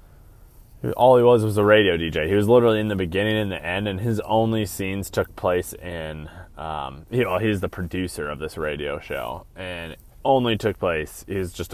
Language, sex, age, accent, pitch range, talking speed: English, male, 20-39, American, 100-130 Hz, 205 wpm